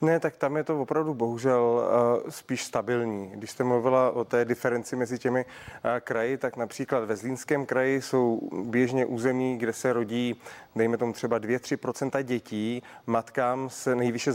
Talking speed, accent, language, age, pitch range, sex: 155 wpm, native, Czech, 30-49, 120-135 Hz, male